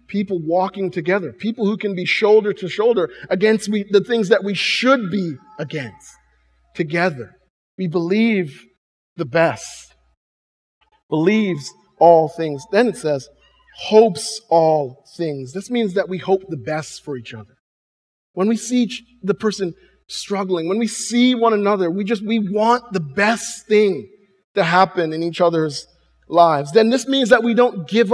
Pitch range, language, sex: 165-220 Hz, English, male